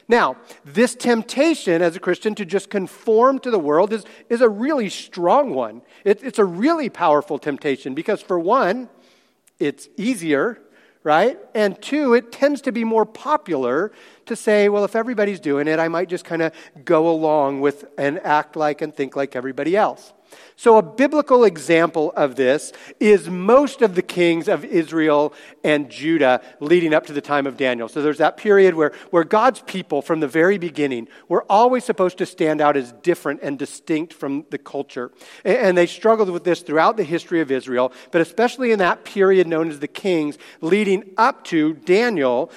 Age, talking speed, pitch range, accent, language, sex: 40-59, 185 wpm, 150-220 Hz, American, English, male